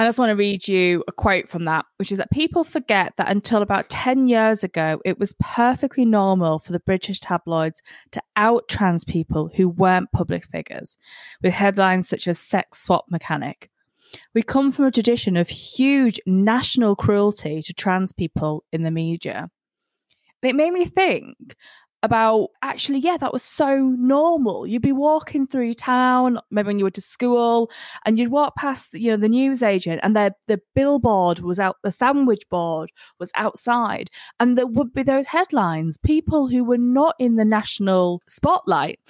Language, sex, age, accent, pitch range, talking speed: English, female, 20-39, British, 185-255 Hz, 175 wpm